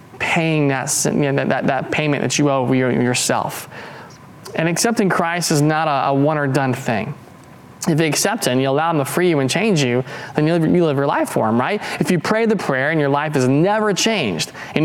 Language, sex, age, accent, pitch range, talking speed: English, male, 20-39, American, 135-180 Hz, 230 wpm